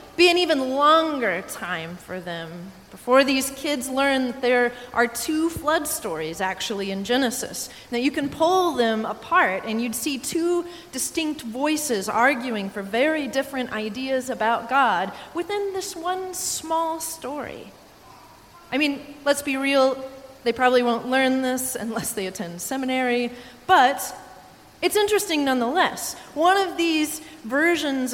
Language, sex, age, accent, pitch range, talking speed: English, female, 30-49, American, 210-275 Hz, 140 wpm